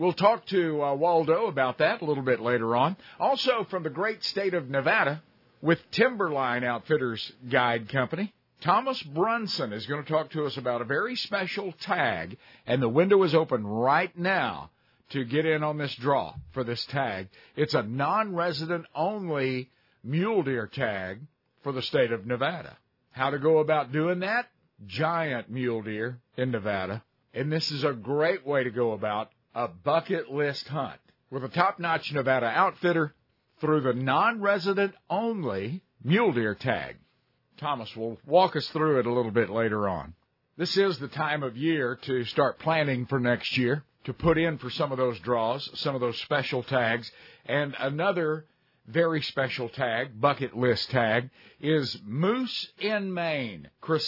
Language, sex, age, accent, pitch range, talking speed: English, male, 50-69, American, 125-160 Hz, 170 wpm